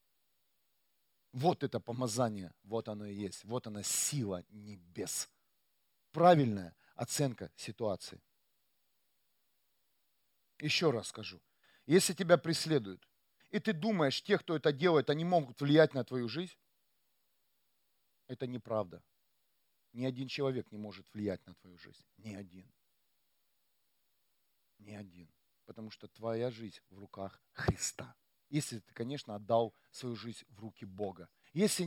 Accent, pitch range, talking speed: native, 110-155 Hz, 120 wpm